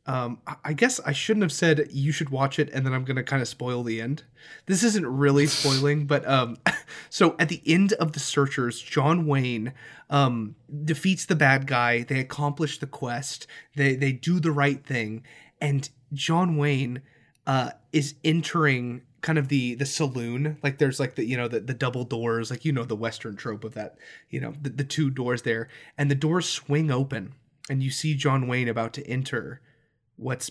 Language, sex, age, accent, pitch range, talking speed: English, male, 20-39, American, 125-150 Hz, 200 wpm